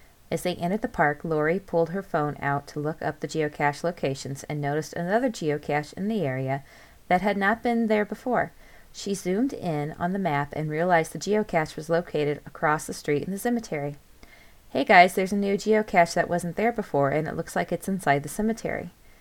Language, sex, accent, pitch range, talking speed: English, female, American, 155-220 Hz, 205 wpm